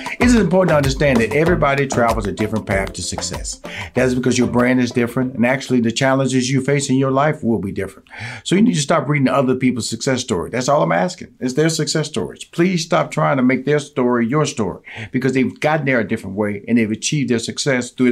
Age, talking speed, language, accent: 50-69, 235 wpm, English, American